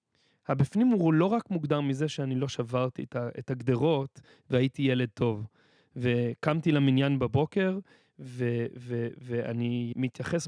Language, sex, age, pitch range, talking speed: Hebrew, male, 30-49, 130-190 Hz, 120 wpm